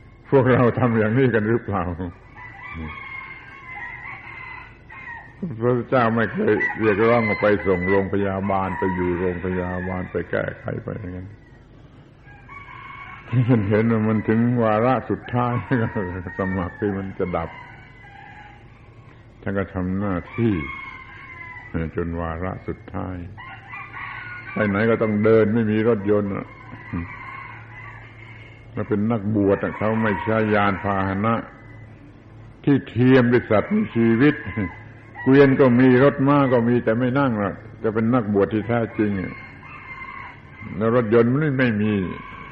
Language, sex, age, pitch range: Thai, male, 70-89, 100-120 Hz